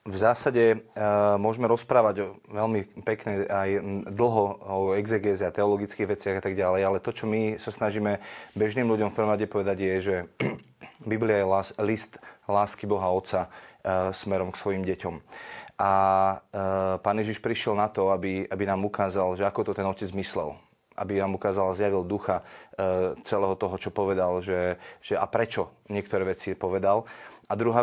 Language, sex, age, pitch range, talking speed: Slovak, male, 30-49, 95-110 Hz, 165 wpm